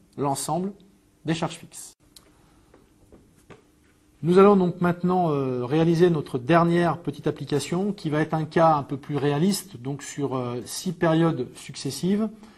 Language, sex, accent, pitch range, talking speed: French, male, French, 135-180 Hz, 130 wpm